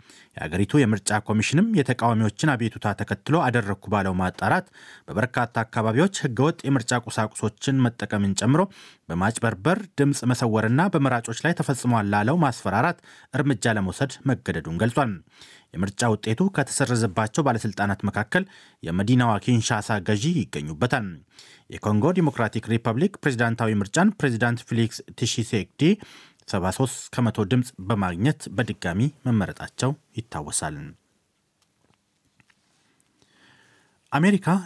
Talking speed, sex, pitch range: 95 wpm, male, 110-140 Hz